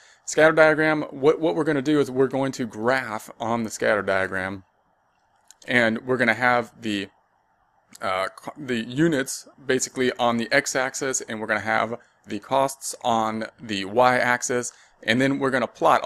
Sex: male